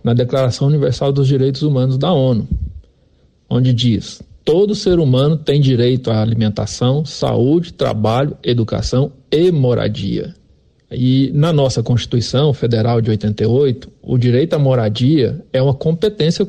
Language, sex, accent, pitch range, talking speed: Portuguese, male, Brazilian, 120-150 Hz, 130 wpm